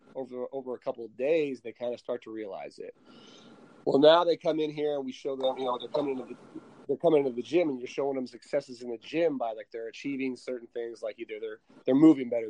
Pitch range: 125-160 Hz